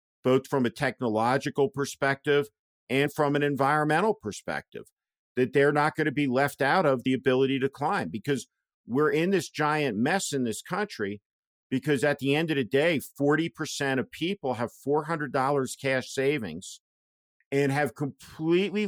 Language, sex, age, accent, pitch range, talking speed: English, male, 50-69, American, 125-150 Hz, 155 wpm